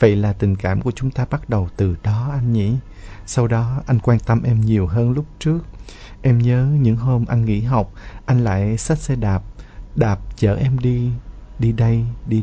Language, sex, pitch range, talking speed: Vietnamese, male, 100-130 Hz, 205 wpm